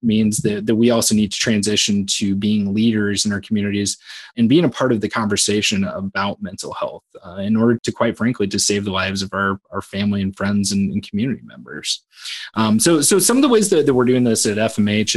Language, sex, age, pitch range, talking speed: English, male, 20-39, 105-115 Hz, 230 wpm